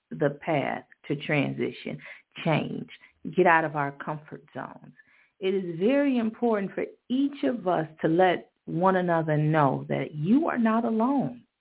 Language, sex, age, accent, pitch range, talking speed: English, female, 40-59, American, 155-200 Hz, 150 wpm